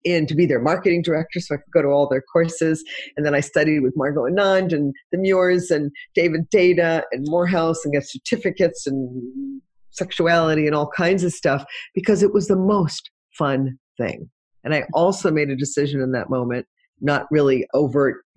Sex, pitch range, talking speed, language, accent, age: female, 140-180 Hz, 190 wpm, English, American, 40-59